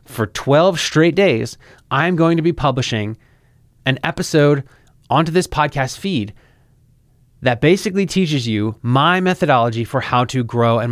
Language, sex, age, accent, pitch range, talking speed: English, male, 30-49, American, 120-145 Hz, 145 wpm